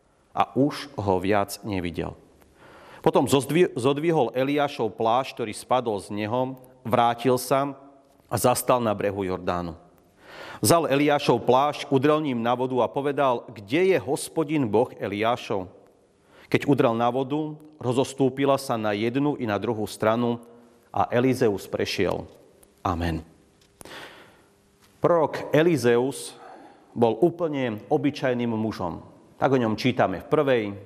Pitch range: 105-145 Hz